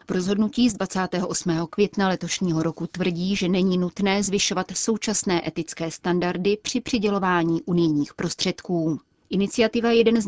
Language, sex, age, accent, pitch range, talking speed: Czech, female, 30-49, native, 165-195 Hz, 130 wpm